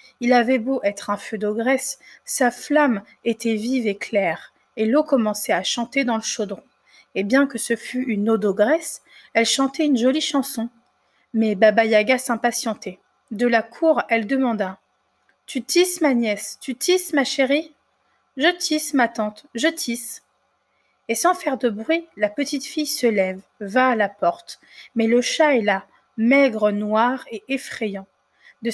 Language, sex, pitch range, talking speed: French, female, 220-270 Hz, 170 wpm